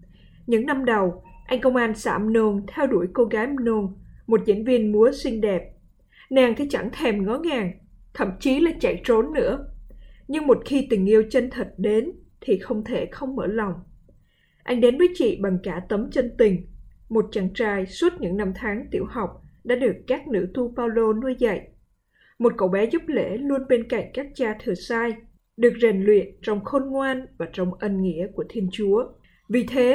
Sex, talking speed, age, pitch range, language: female, 195 wpm, 20-39, 200-255 Hz, Vietnamese